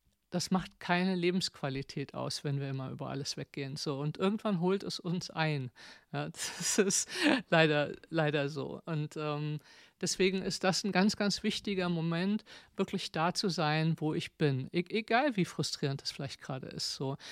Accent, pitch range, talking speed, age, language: German, 155-195 Hz, 160 wpm, 50-69, German